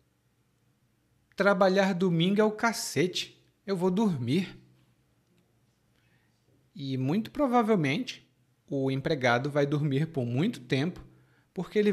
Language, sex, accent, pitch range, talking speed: Portuguese, male, Brazilian, 125-200 Hz, 100 wpm